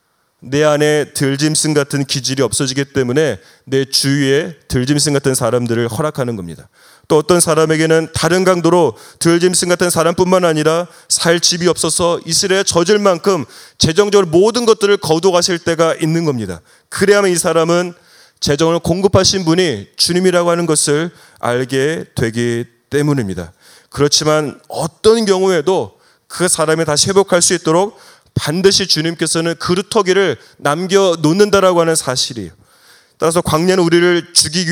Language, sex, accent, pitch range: Korean, male, native, 145-175 Hz